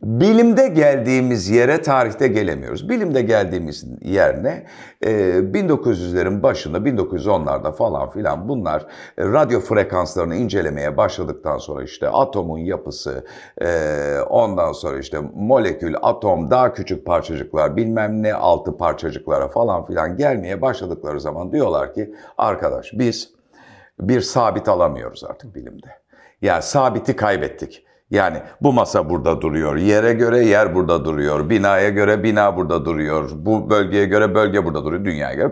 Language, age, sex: Turkish, 60-79, male